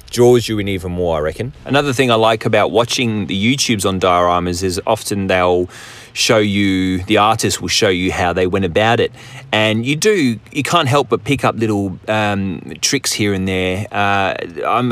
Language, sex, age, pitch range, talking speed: English, male, 30-49, 100-125 Hz, 195 wpm